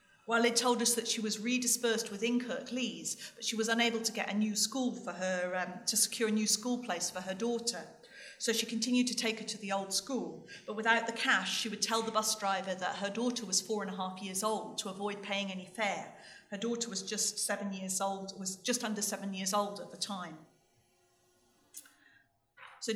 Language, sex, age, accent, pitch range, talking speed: English, female, 40-59, British, 195-235 Hz, 220 wpm